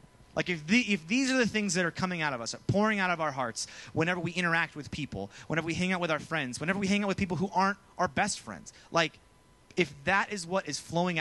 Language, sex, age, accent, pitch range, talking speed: English, male, 30-49, American, 130-190 Hz, 255 wpm